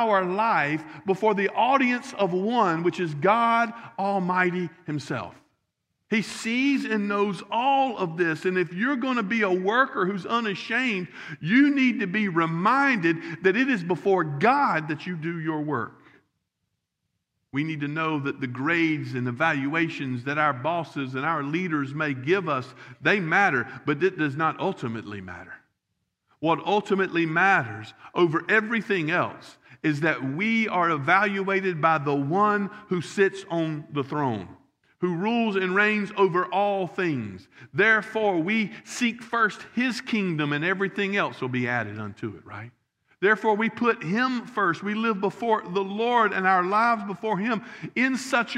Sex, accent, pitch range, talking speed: male, American, 160-220 Hz, 160 wpm